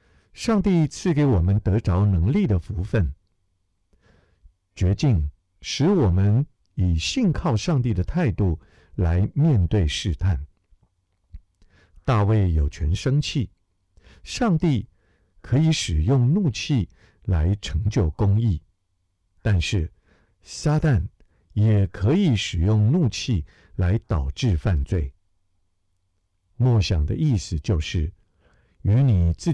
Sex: male